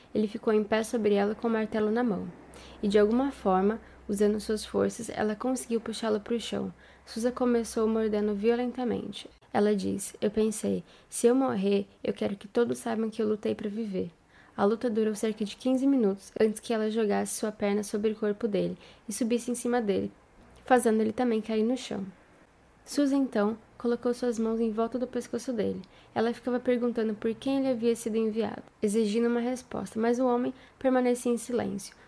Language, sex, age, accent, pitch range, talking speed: Portuguese, female, 10-29, Brazilian, 210-240 Hz, 190 wpm